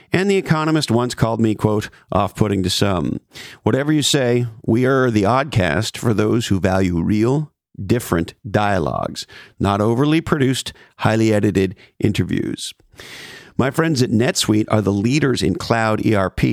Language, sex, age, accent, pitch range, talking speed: English, male, 50-69, American, 100-130 Hz, 150 wpm